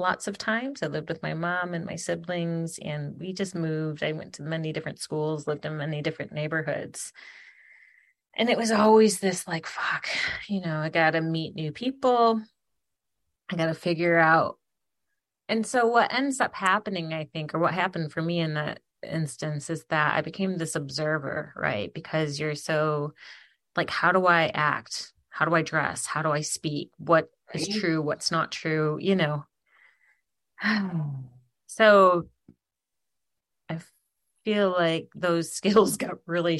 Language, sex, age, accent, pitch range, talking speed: English, female, 30-49, American, 155-190 Hz, 165 wpm